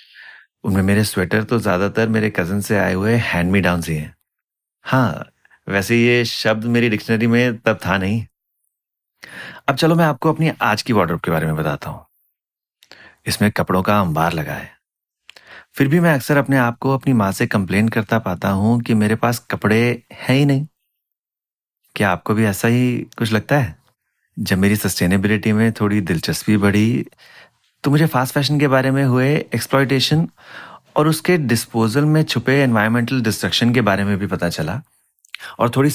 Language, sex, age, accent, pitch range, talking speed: Hindi, male, 30-49, native, 105-135 Hz, 170 wpm